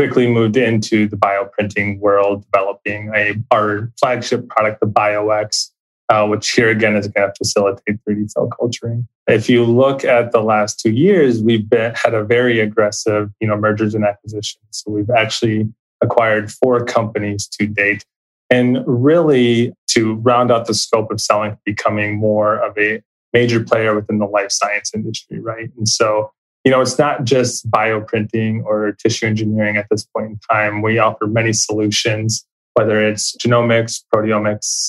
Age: 20-39